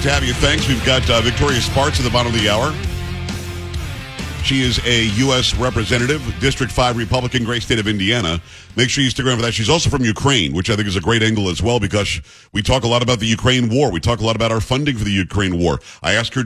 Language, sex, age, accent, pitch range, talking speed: English, male, 50-69, American, 105-130 Hz, 255 wpm